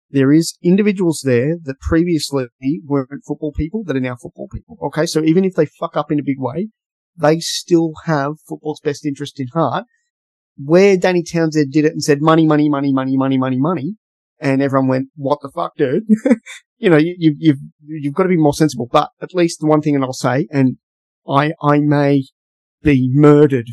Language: English